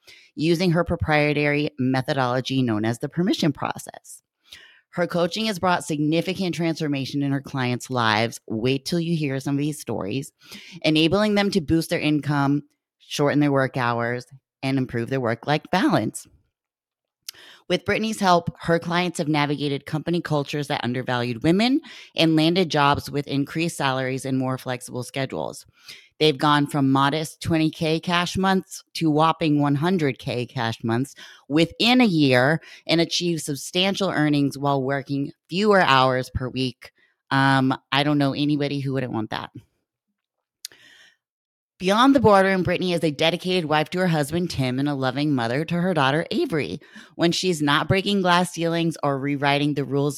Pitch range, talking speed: 135-175 Hz, 155 wpm